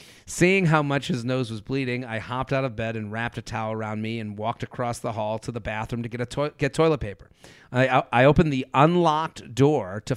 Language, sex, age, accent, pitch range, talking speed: English, male, 40-59, American, 120-145 Hz, 235 wpm